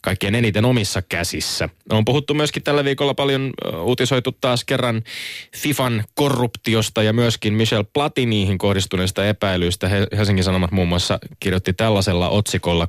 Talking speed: 130 wpm